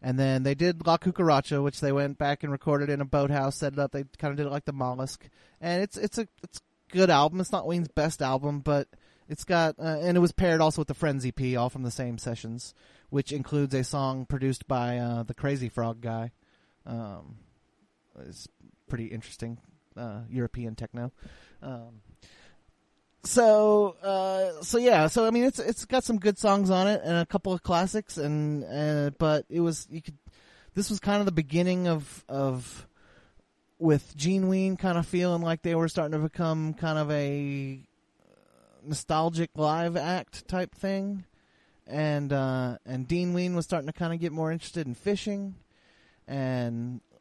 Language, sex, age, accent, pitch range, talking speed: English, male, 30-49, American, 130-175 Hz, 185 wpm